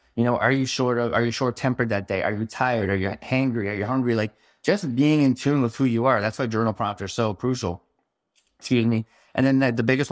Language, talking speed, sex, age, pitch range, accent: English, 260 wpm, male, 20-39, 105-125 Hz, American